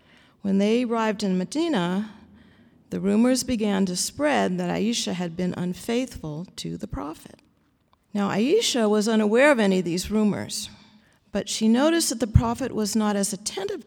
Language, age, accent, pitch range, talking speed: English, 40-59, American, 185-230 Hz, 160 wpm